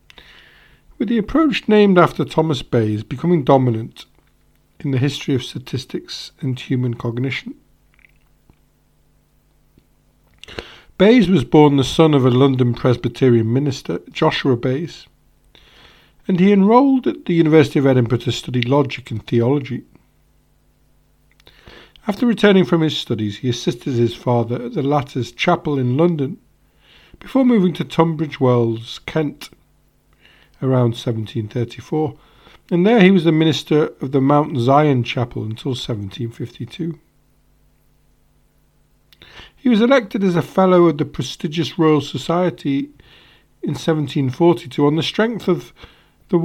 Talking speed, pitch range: 125 wpm, 125-175 Hz